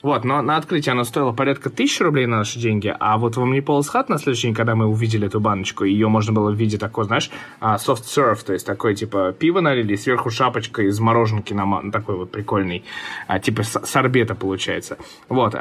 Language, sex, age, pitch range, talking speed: Russian, male, 20-39, 110-145 Hz, 205 wpm